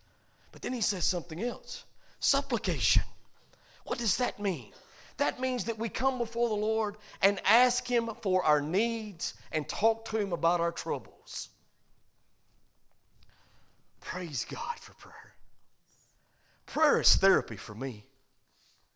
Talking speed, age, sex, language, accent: 130 wpm, 50-69, male, English, American